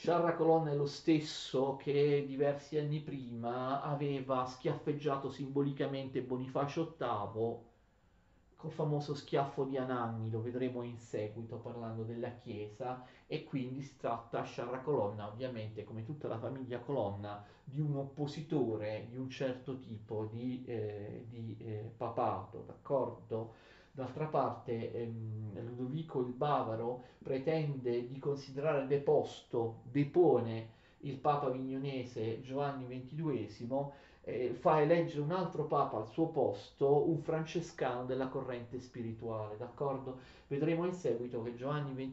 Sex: male